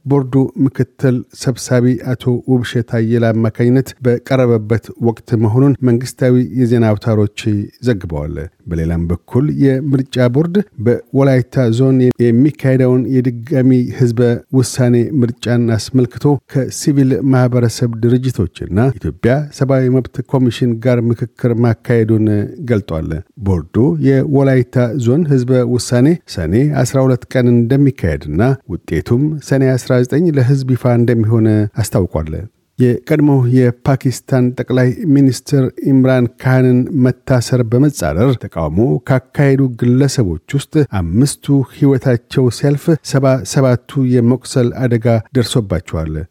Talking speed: 90 wpm